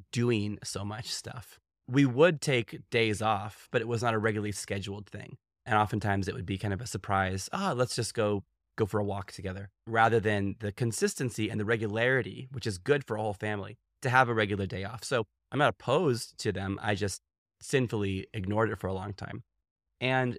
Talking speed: 210 wpm